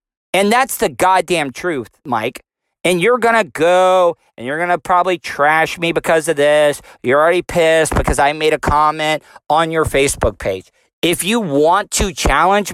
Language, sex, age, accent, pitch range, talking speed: English, male, 40-59, American, 160-210 Hz, 180 wpm